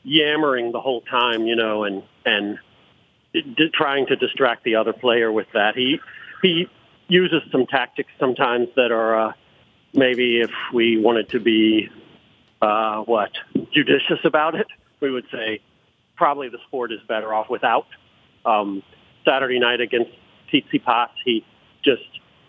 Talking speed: 145 wpm